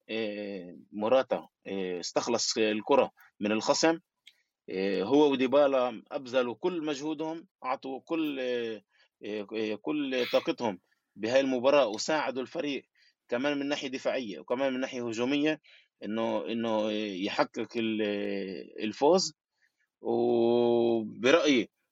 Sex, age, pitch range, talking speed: male, 20-39, 105-140 Hz, 85 wpm